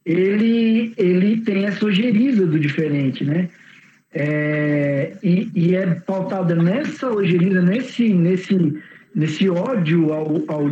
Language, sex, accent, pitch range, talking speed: Portuguese, male, Brazilian, 170-230 Hz, 120 wpm